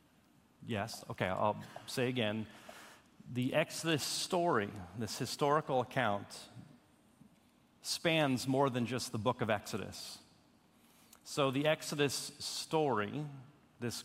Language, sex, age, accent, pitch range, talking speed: English, male, 40-59, American, 115-135 Hz, 105 wpm